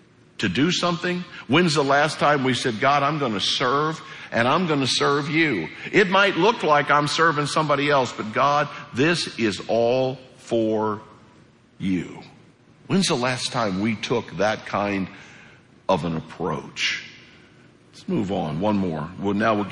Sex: male